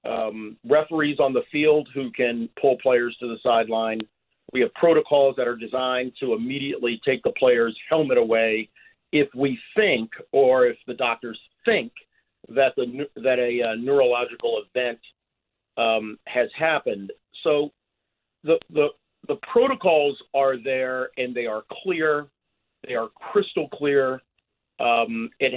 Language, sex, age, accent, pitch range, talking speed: English, male, 40-59, American, 115-150 Hz, 140 wpm